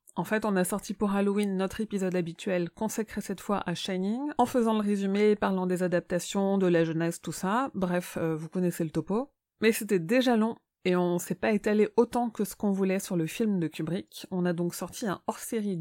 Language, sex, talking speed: French, female, 220 wpm